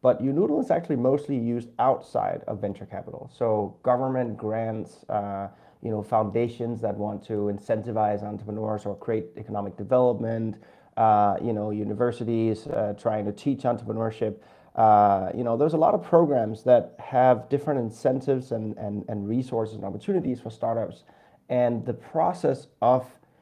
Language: English